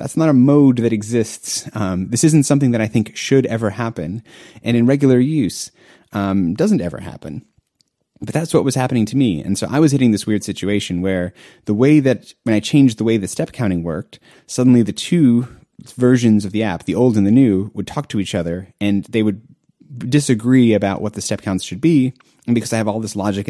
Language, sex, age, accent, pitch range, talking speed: English, male, 30-49, American, 100-125 Hz, 225 wpm